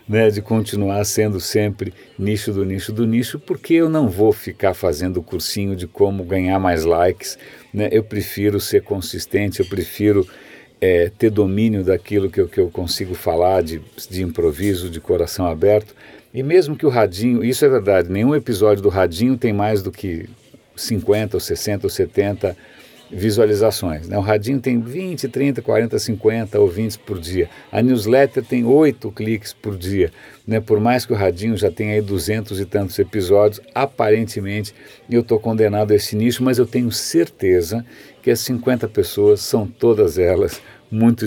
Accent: Brazilian